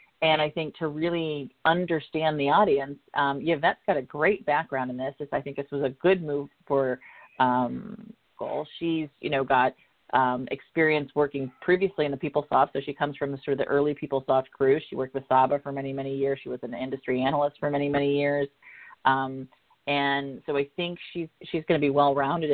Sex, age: female, 40-59